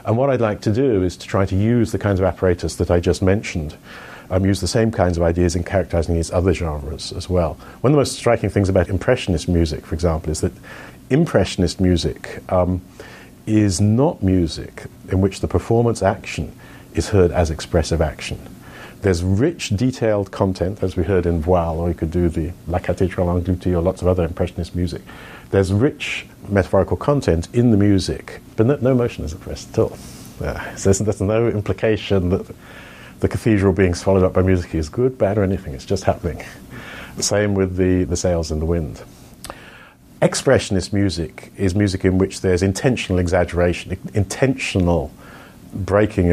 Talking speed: 180 wpm